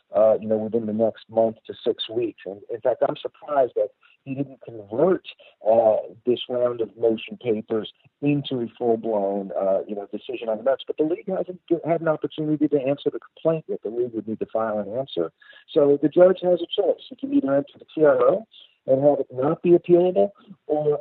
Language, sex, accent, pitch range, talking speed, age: English, male, American, 125-165 Hz, 210 wpm, 50-69